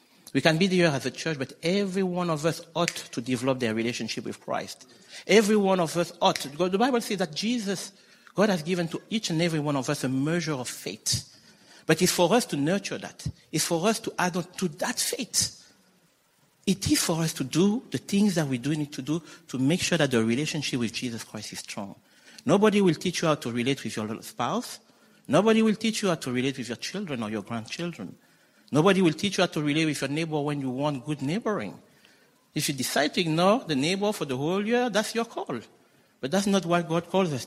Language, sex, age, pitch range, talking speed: English, male, 50-69, 135-190 Hz, 230 wpm